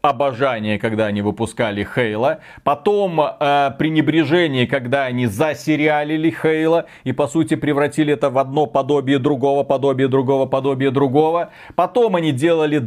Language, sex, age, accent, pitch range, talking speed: Russian, male, 30-49, native, 135-185 Hz, 130 wpm